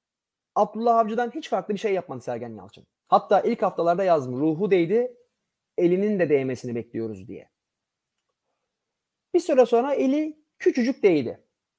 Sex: male